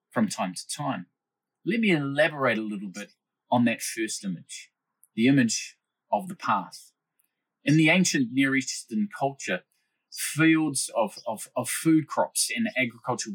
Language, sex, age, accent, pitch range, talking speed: English, male, 20-39, Australian, 120-190 Hz, 150 wpm